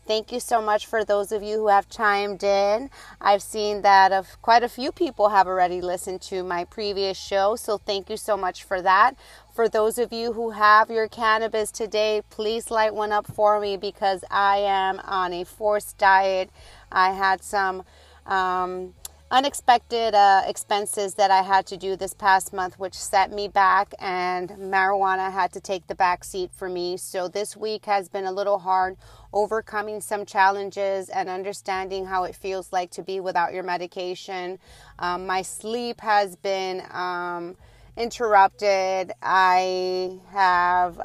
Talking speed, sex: 170 wpm, female